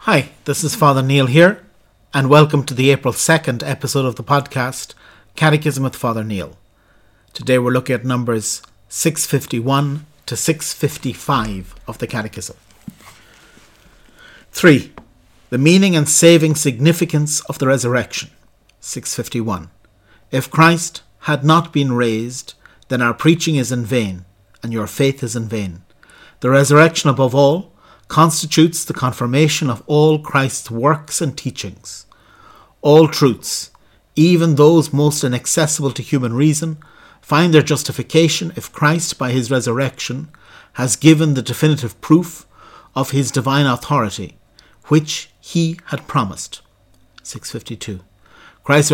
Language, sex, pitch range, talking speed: English, male, 120-155 Hz, 130 wpm